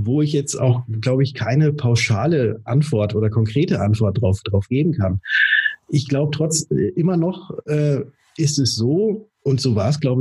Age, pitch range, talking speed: 30-49, 115-145 Hz, 175 wpm